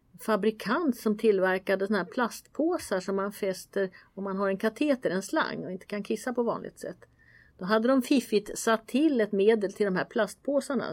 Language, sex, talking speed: Swedish, female, 185 wpm